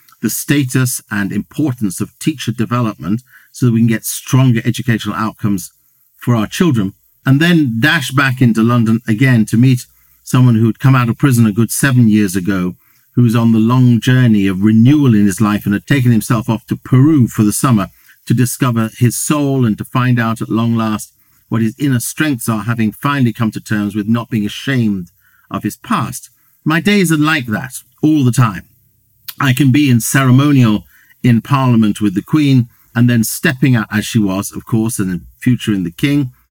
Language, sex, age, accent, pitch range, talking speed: English, male, 50-69, British, 110-130 Hz, 195 wpm